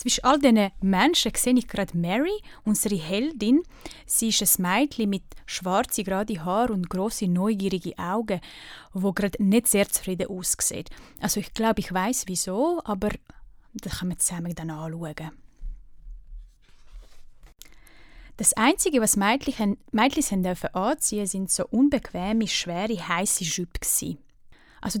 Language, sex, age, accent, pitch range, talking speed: German, female, 20-39, Swiss, 185-240 Hz, 130 wpm